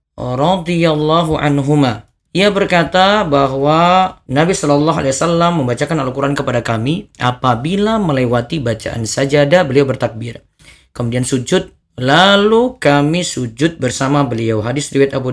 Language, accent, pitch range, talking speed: Indonesian, native, 120-150 Hz, 105 wpm